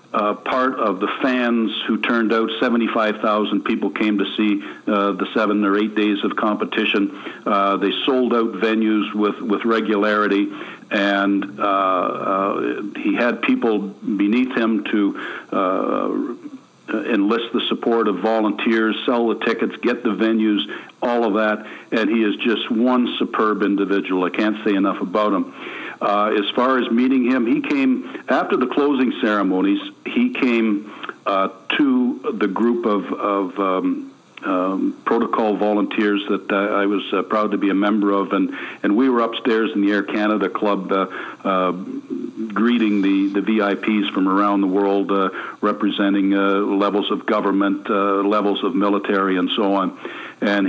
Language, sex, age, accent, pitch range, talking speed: English, male, 60-79, American, 100-115 Hz, 155 wpm